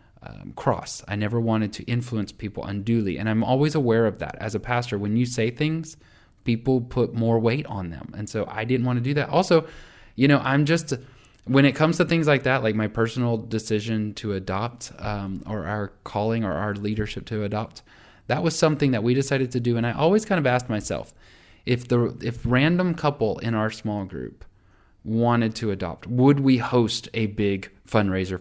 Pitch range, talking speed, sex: 100-125 Hz, 205 wpm, male